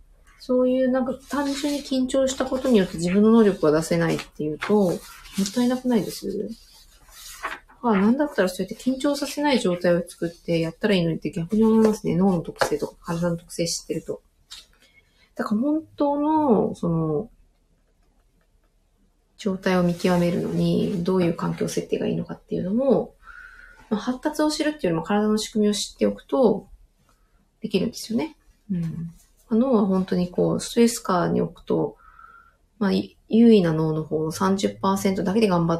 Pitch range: 170-235 Hz